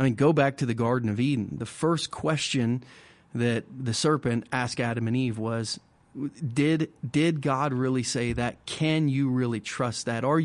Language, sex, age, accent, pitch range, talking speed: English, male, 40-59, American, 120-150 Hz, 185 wpm